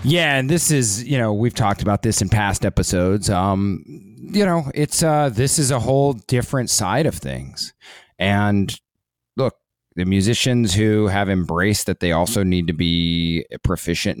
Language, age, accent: English, 30-49, American